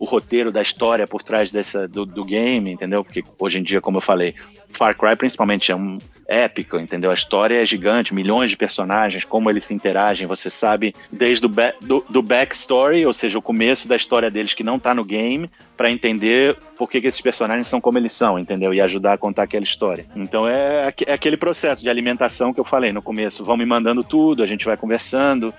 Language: Portuguese